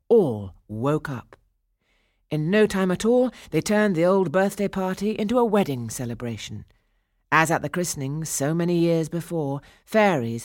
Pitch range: 115-170 Hz